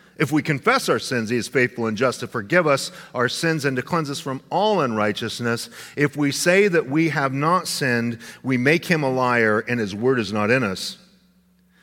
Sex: male